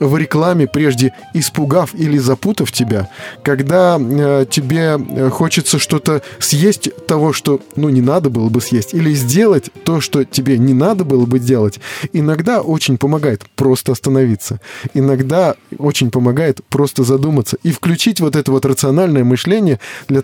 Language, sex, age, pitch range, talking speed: Russian, male, 20-39, 130-160 Hz, 145 wpm